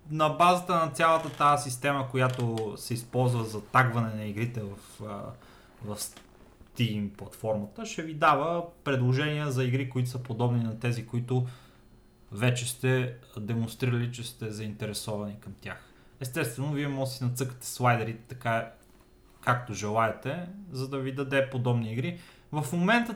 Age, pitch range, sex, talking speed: 30-49, 115-145 Hz, male, 145 wpm